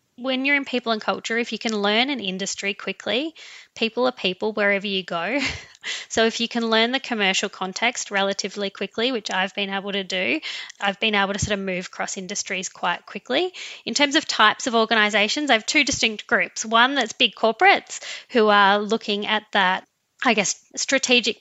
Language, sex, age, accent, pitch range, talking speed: English, female, 20-39, Australian, 200-235 Hz, 195 wpm